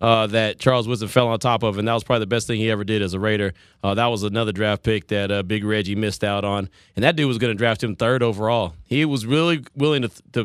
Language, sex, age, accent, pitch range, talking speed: English, male, 30-49, American, 100-130 Hz, 295 wpm